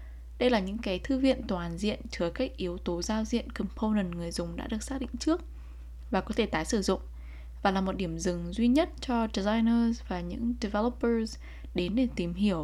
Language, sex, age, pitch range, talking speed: Vietnamese, female, 10-29, 175-235 Hz, 210 wpm